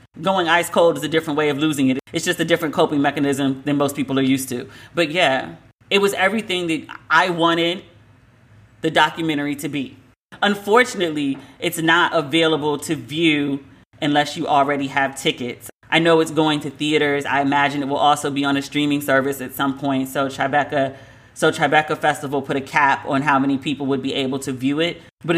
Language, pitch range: English, 135-155 Hz